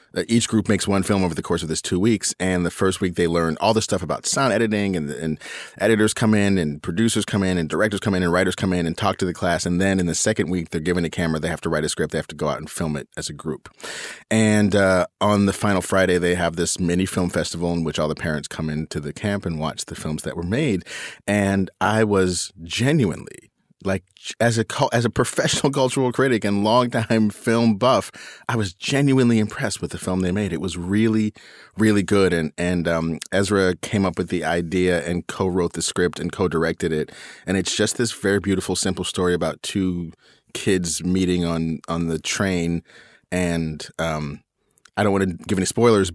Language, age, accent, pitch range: English, 30-49, American, 85-105 Hz